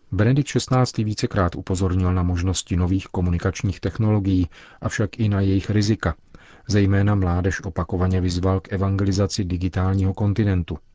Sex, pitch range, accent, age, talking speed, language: male, 90-105 Hz, native, 40-59, 120 wpm, Czech